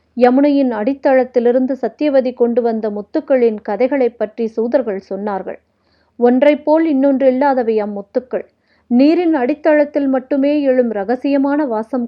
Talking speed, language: 105 wpm, Tamil